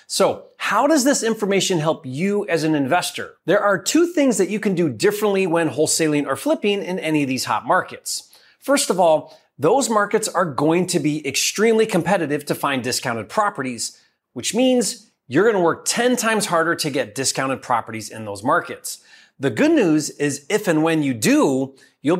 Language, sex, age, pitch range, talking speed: English, male, 30-49, 145-215 Hz, 185 wpm